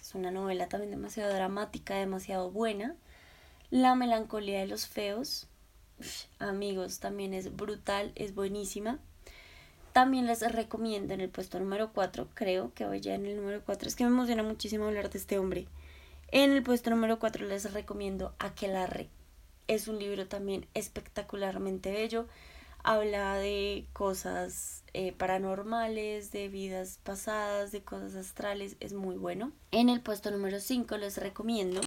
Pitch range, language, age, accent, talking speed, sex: 195-220 Hz, Spanish, 20-39, Colombian, 150 wpm, female